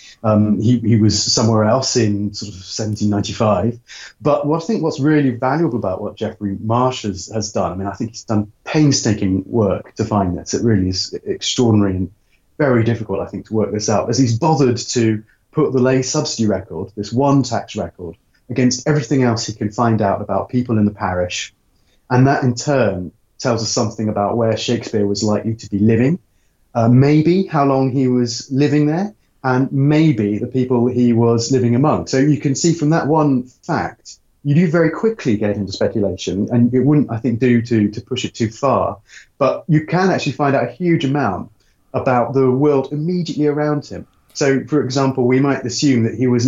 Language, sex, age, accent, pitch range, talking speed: English, male, 30-49, British, 105-135 Hz, 200 wpm